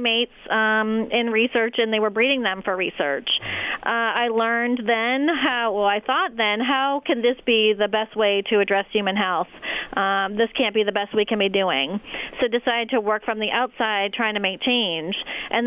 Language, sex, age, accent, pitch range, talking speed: English, female, 30-49, American, 215-255 Hz, 205 wpm